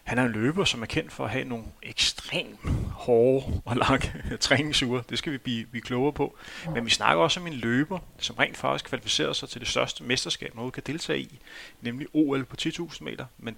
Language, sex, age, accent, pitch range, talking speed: Danish, male, 30-49, native, 115-145 Hz, 215 wpm